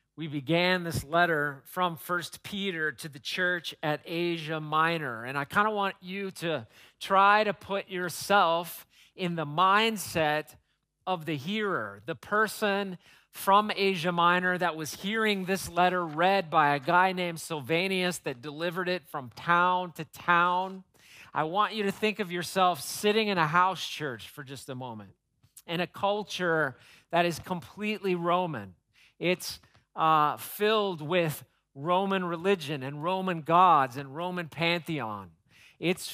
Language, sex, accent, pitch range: English, male, American, 150-195 Hz